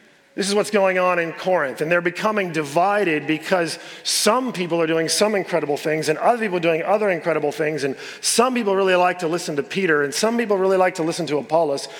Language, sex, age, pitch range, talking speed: English, male, 40-59, 165-195 Hz, 225 wpm